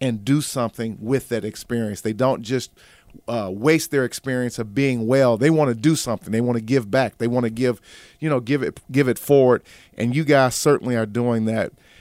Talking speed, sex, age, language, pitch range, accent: 220 wpm, male, 40-59, English, 120-145 Hz, American